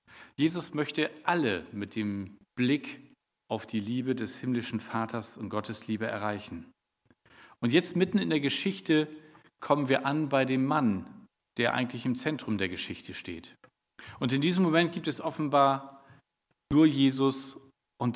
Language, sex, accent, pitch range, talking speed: German, male, German, 115-145 Hz, 150 wpm